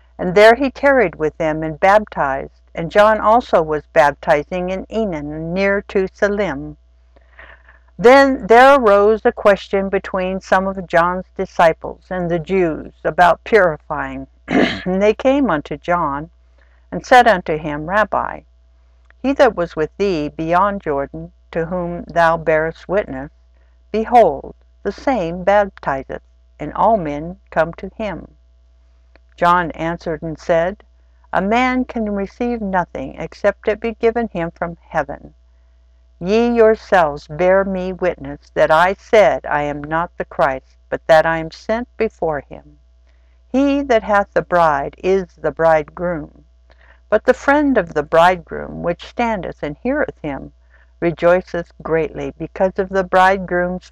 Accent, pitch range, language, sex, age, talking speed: American, 140-200 Hz, English, female, 60-79, 140 wpm